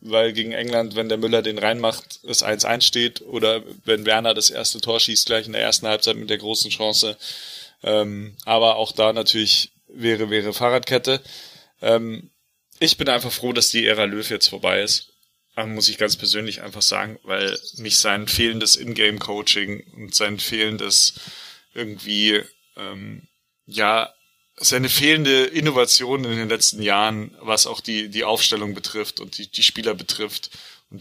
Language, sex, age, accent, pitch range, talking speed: German, male, 30-49, German, 105-120 Hz, 165 wpm